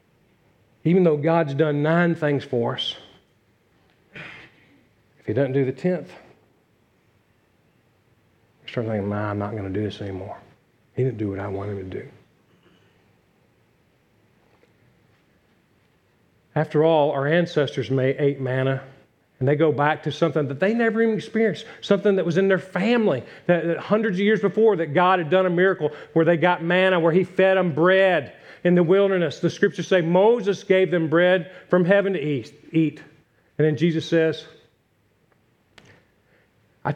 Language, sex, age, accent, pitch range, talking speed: English, male, 40-59, American, 145-185 Hz, 155 wpm